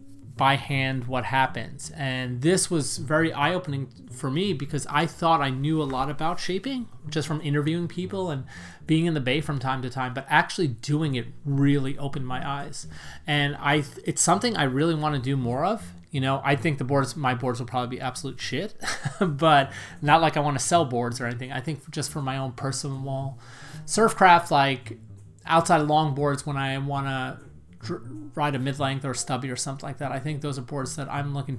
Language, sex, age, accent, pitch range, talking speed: English, male, 30-49, American, 130-155 Hz, 205 wpm